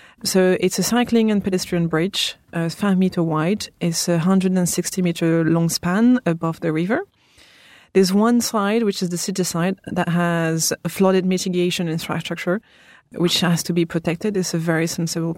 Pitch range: 170-195 Hz